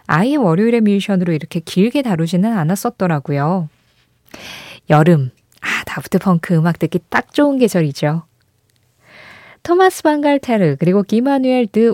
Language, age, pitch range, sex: Korean, 20-39, 155-240 Hz, female